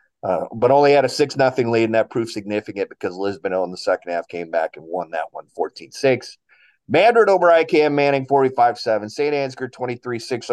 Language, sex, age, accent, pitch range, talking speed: English, male, 30-49, American, 110-140 Hz, 180 wpm